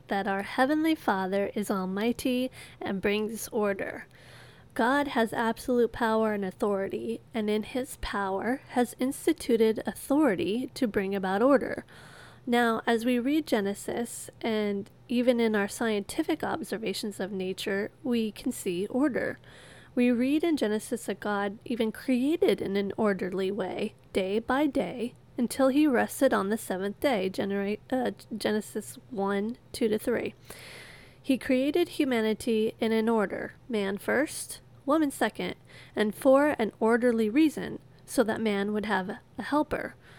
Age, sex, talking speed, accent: 30-49, female, 140 wpm, American